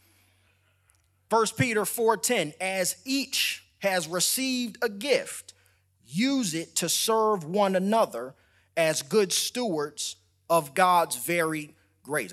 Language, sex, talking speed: English, male, 105 wpm